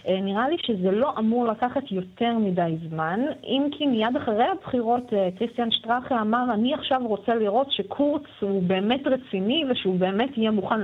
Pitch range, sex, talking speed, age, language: 180-255 Hz, female, 160 wpm, 30-49, Hebrew